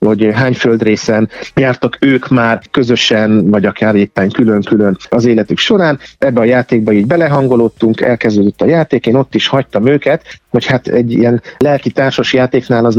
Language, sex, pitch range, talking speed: Hungarian, male, 115-135 Hz, 160 wpm